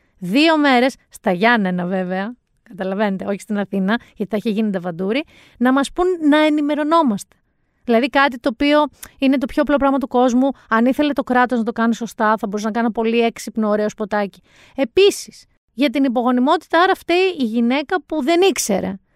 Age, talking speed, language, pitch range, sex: 30-49, 180 wpm, Greek, 215-290 Hz, female